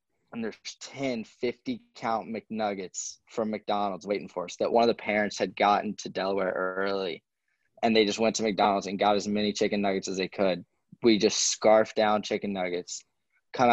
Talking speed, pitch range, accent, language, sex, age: 185 wpm, 100-115 Hz, American, English, male, 20-39